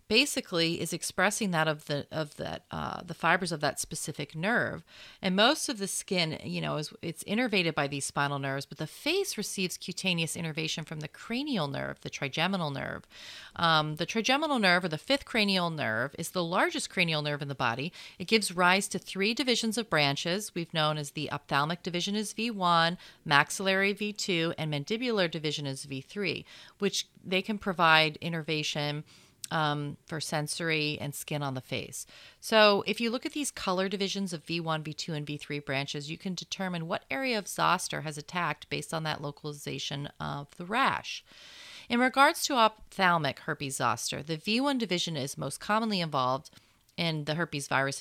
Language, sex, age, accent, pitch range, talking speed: English, female, 30-49, American, 150-205 Hz, 175 wpm